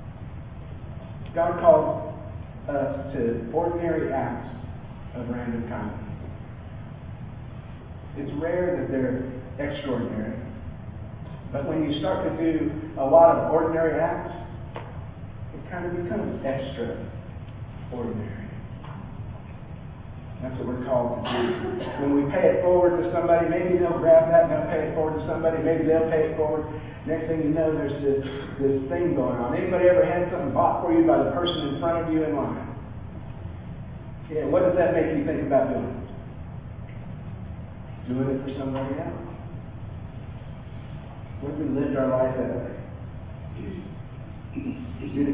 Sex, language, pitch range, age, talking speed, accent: male, English, 120-160 Hz, 40-59, 145 wpm, American